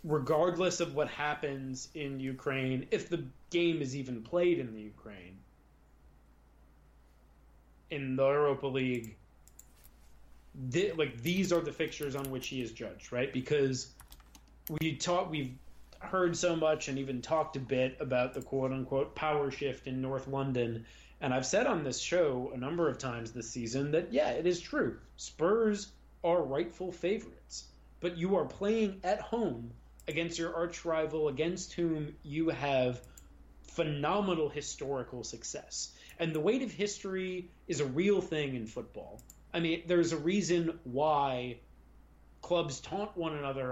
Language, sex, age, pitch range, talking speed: English, male, 30-49, 125-165 Hz, 150 wpm